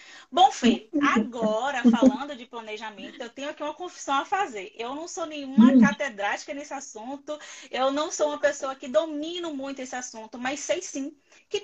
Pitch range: 245-300 Hz